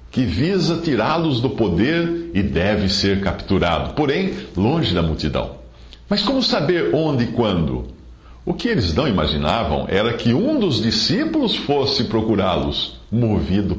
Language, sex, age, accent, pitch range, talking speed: English, male, 50-69, Brazilian, 75-115 Hz, 140 wpm